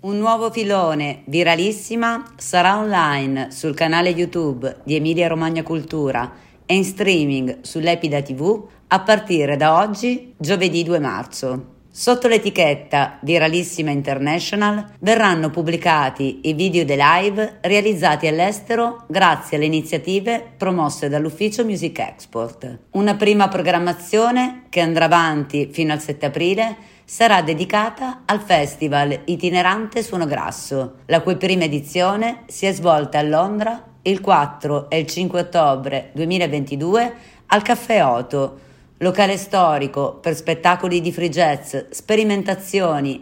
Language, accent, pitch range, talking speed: Italian, native, 150-200 Hz, 120 wpm